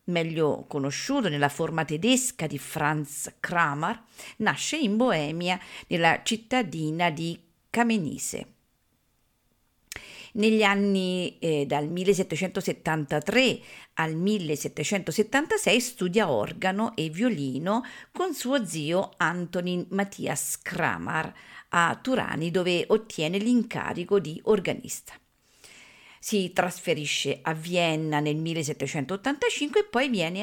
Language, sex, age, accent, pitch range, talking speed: Italian, female, 50-69, native, 155-220 Hz, 95 wpm